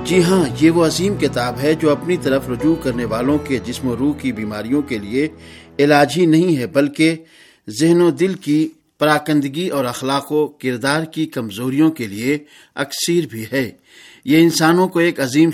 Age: 50-69